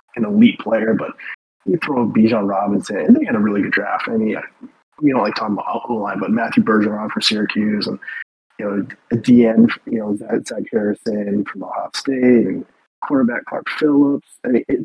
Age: 20-39